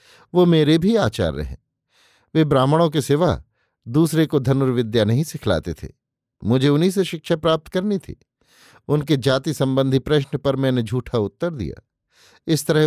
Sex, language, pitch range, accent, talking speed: male, Hindi, 120-150 Hz, native, 155 wpm